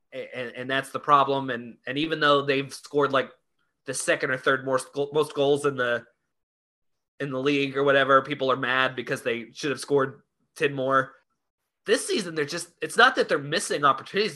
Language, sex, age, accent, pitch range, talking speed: English, male, 20-39, American, 130-180 Hz, 190 wpm